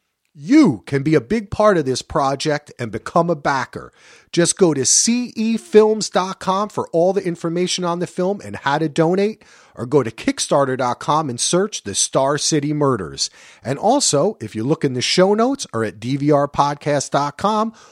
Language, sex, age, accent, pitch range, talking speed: English, male, 40-59, American, 145-220 Hz, 165 wpm